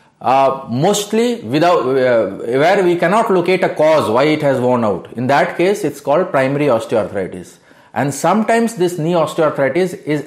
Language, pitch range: Bengali, 140-180 Hz